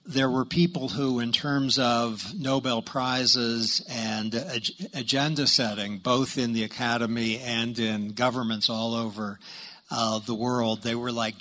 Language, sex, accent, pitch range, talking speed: English, male, American, 115-140 Hz, 140 wpm